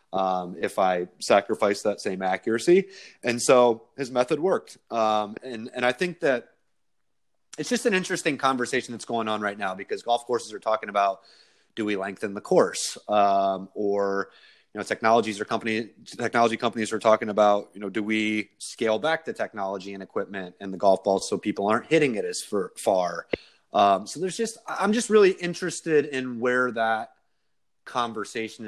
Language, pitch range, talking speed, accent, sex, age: English, 100-120 Hz, 175 wpm, American, male, 30-49